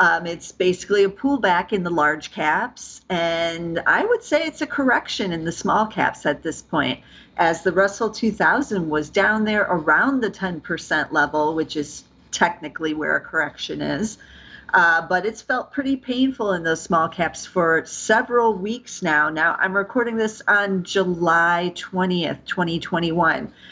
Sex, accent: female, American